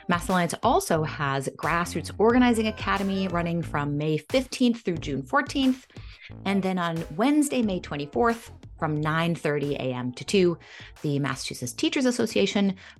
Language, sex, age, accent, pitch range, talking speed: English, female, 30-49, American, 145-210 Hz, 135 wpm